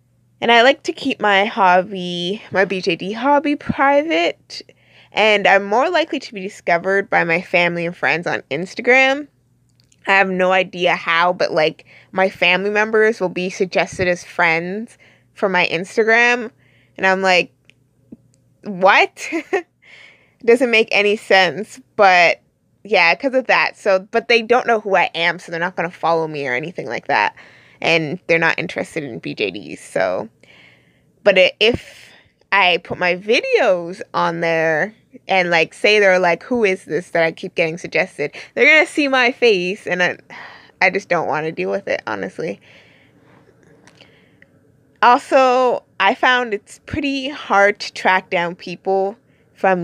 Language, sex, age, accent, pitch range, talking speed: English, female, 20-39, American, 175-225 Hz, 155 wpm